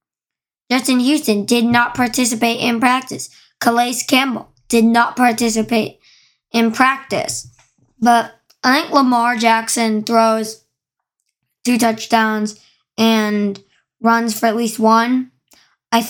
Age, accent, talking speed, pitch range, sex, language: 20-39, American, 110 wpm, 220-270 Hz, male, English